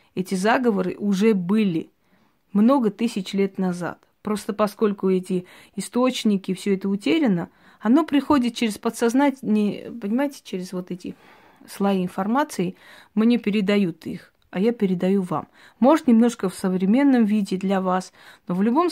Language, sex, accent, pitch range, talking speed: Russian, female, native, 190-230 Hz, 135 wpm